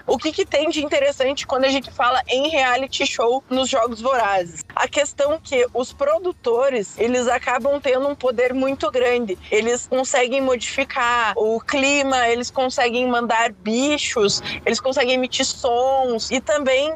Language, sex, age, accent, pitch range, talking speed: Portuguese, female, 20-39, Brazilian, 235-285 Hz, 150 wpm